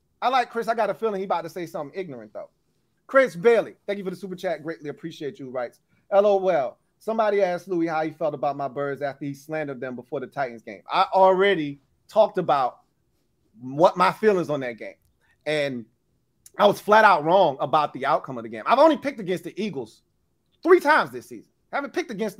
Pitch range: 160-215 Hz